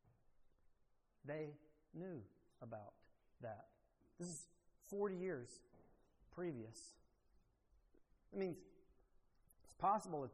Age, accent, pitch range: 40-59, American, 135-195 Hz